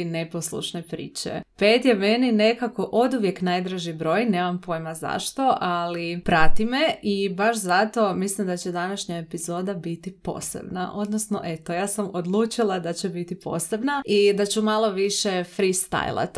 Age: 30-49